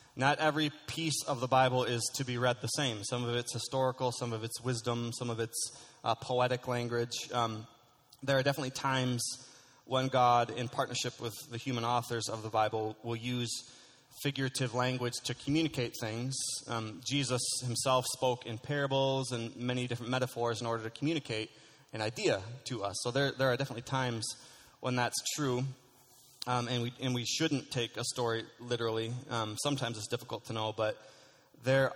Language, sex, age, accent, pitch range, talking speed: English, male, 20-39, American, 115-130 Hz, 175 wpm